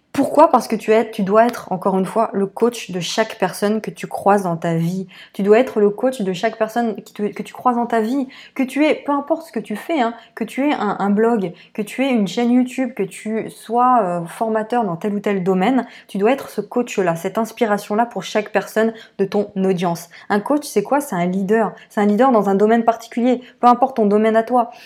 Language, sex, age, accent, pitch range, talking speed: French, female, 20-39, French, 200-245 Hz, 250 wpm